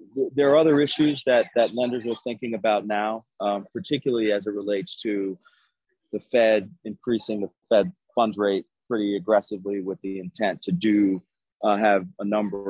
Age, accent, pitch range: 30-49, American, 95-115 Hz